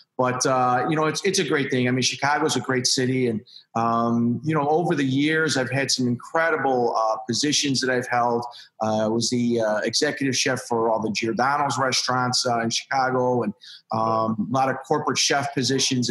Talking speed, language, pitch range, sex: 205 wpm, English, 120-145 Hz, male